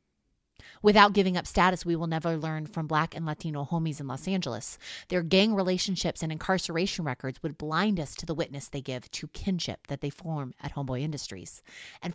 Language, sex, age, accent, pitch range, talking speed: English, female, 30-49, American, 140-180 Hz, 195 wpm